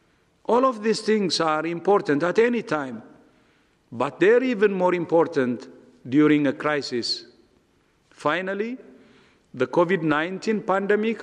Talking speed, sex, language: 110 wpm, male, English